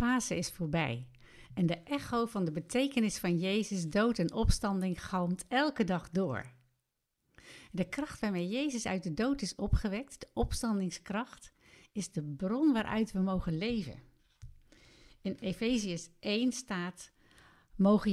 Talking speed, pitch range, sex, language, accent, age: 130 wpm, 175-240 Hz, female, Dutch, Dutch, 60-79